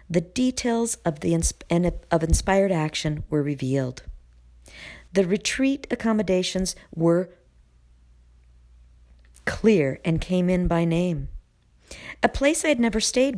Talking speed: 110 wpm